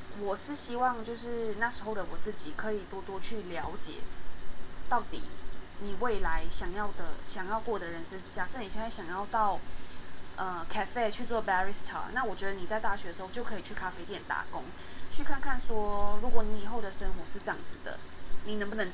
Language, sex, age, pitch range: Chinese, female, 20-39, 190-230 Hz